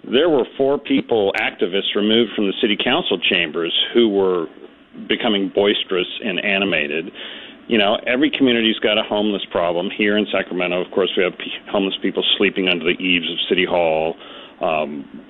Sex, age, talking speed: male, 40-59, 165 wpm